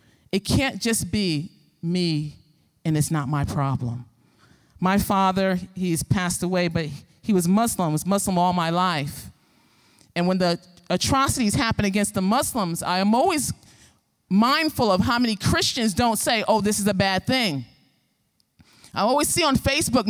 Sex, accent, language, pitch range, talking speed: male, American, English, 160-220 Hz, 160 wpm